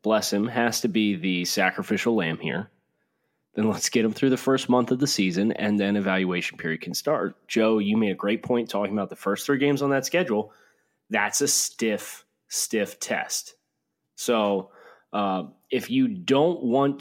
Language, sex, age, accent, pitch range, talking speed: English, male, 30-49, American, 100-125 Hz, 185 wpm